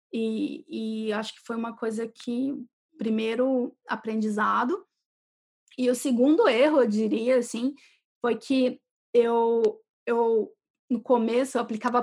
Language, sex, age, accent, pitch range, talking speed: Portuguese, female, 20-39, Brazilian, 235-290 Hz, 125 wpm